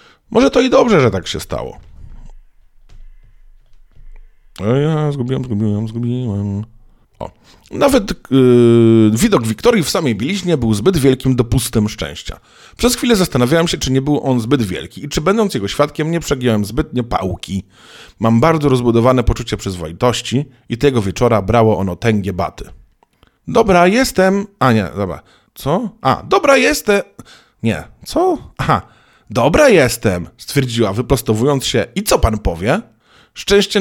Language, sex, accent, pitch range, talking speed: Polish, male, native, 110-175 Hz, 140 wpm